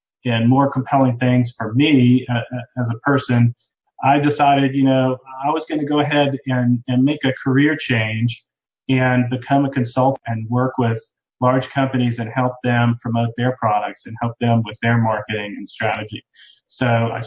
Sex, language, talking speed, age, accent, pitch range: male, English, 175 wpm, 40-59, American, 120-135 Hz